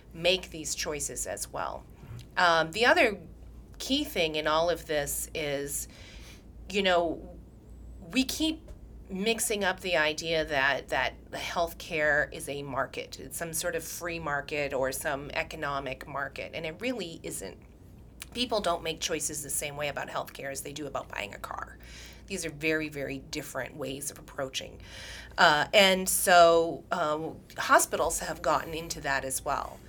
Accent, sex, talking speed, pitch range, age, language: American, female, 155 wpm, 150-185 Hz, 30-49, English